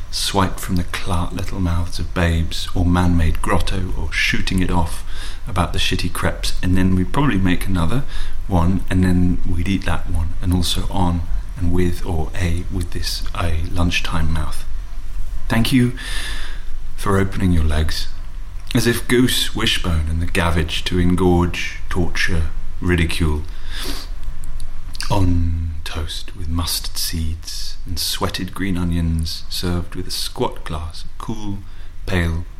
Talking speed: 145 wpm